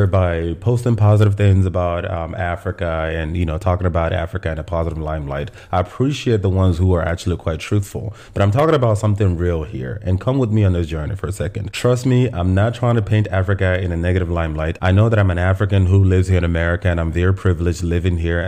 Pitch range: 85-105 Hz